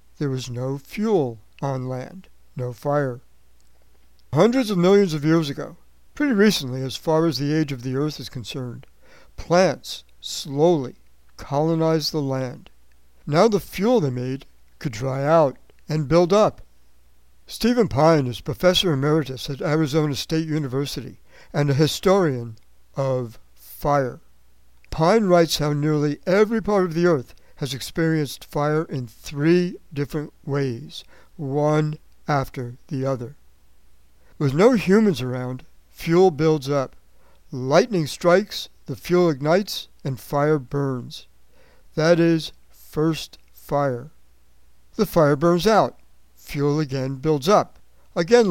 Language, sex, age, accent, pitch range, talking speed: English, male, 60-79, American, 125-165 Hz, 130 wpm